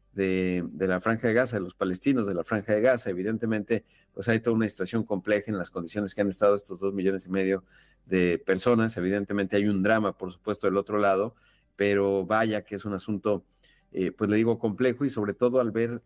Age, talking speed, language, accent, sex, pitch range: 40-59, 220 wpm, Spanish, Mexican, male, 100-115 Hz